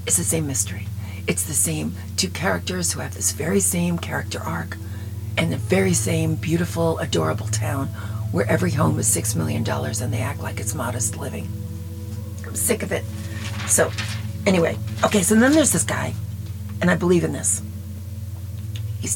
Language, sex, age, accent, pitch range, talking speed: English, female, 40-59, American, 85-100 Hz, 170 wpm